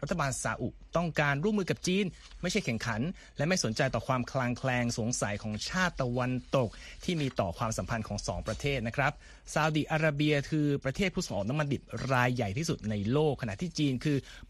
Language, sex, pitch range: Thai, male, 115-155 Hz